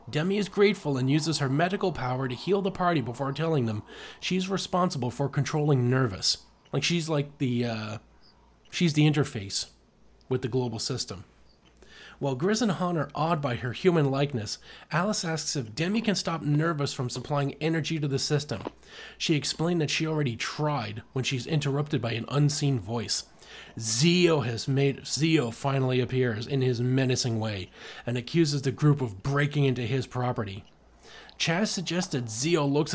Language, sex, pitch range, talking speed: English, male, 125-160 Hz, 170 wpm